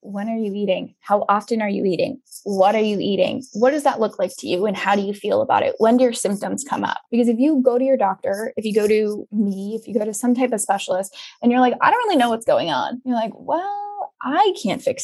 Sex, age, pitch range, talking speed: female, 10-29, 210-255 Hz, 275 wpm